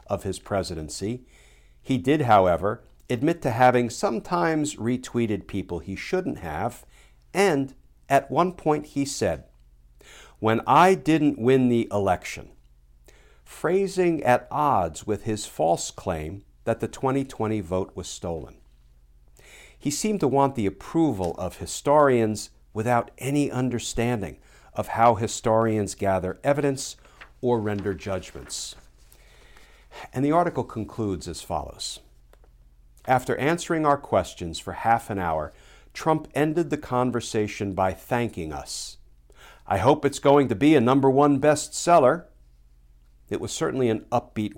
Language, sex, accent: English, male, American